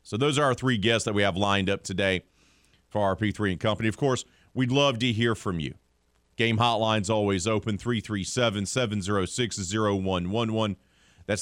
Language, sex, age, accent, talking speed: English, male, 40-59, American, 165 wpm